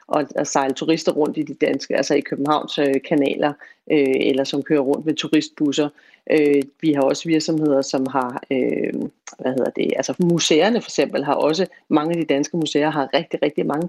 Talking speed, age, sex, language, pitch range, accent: 175 wpm, 40-59, female, Danish, 155-190 Hz, native